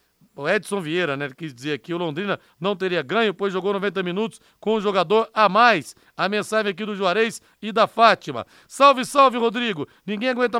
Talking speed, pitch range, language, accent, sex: 195 wpm, 180-220 Hz, Portuguese, Brazilian, male